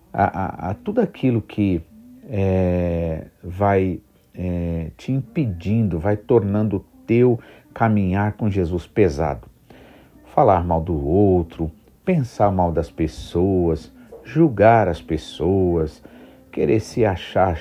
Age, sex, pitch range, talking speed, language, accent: 50-69, male, 85-105 Hz, 100 wpm, Portuguese, Brazilian